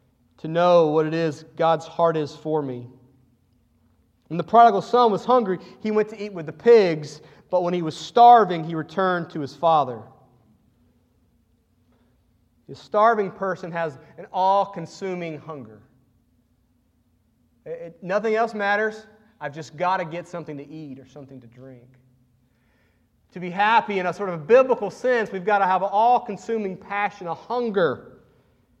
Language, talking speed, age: English, 155 wpm, 30-49